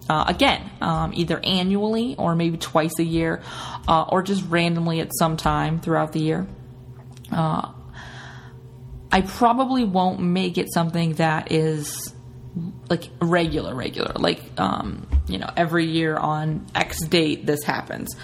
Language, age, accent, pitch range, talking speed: English, 20-39, American, 155-185 Hz, 140 wpm